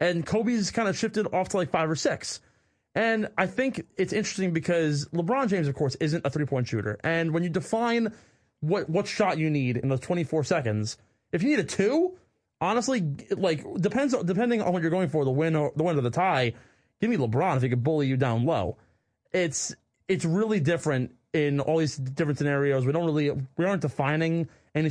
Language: English